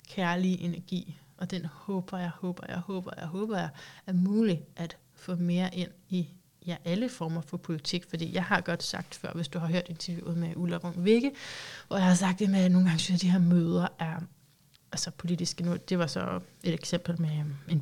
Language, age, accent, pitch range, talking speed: Danish, 30-49, native, 165-195 Hz, 210 wpm